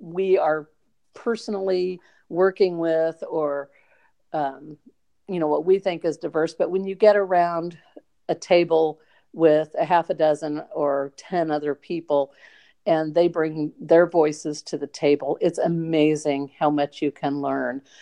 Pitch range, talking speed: 150-180 Hz, 150 wpm